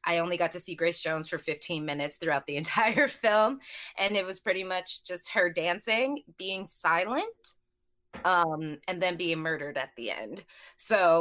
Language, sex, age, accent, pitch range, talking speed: English, female, 20-39, American, 160-190 Hz, 175 wpm